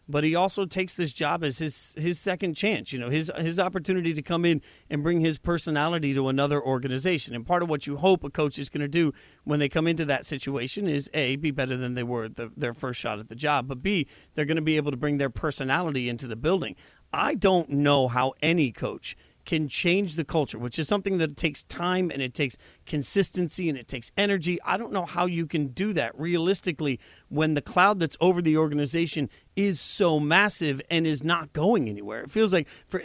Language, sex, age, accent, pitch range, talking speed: English, male, 40-59, American, 145-180 Hz, 225 wpm